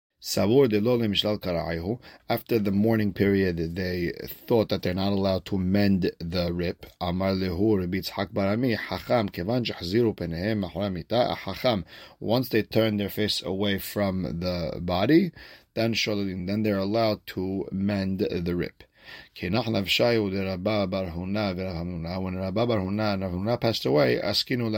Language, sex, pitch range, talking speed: English, male, 95-110 Hz, 85 wpm